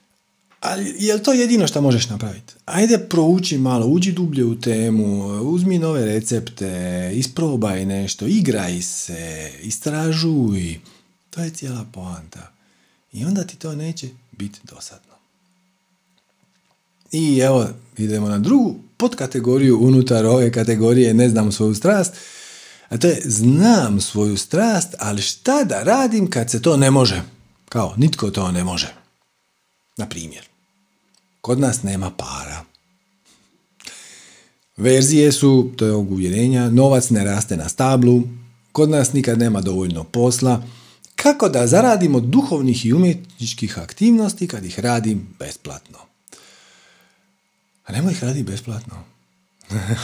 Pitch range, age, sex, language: 105-175 Hz, 40-59, male, Croatian